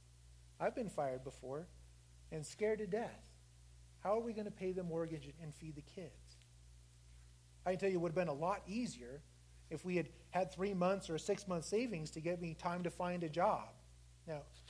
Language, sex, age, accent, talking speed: English, male, 30-49, American, 205 wpm